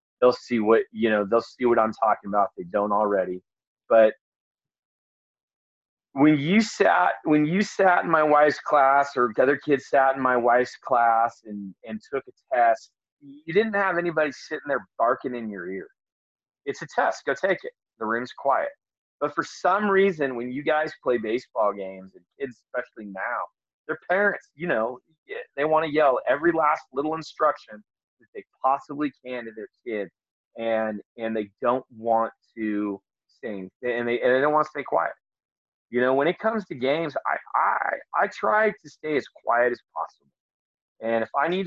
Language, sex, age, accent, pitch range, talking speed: English, male, 30-49, American, 110-155 Hz, 185 wpm